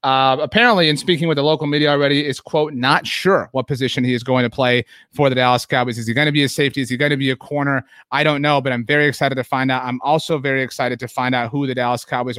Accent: American